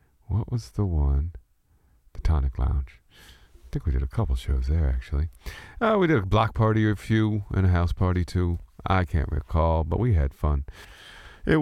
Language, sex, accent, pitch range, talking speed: English, male, American, 75-105 Hz, 195 wpm